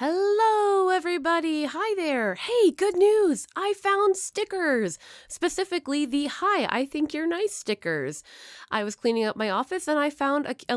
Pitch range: 195-305 Hz